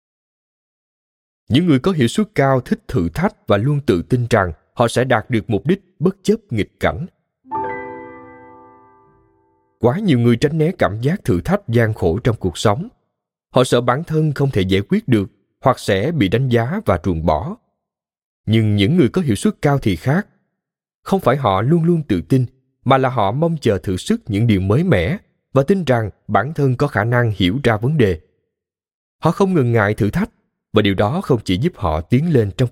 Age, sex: 20-39, male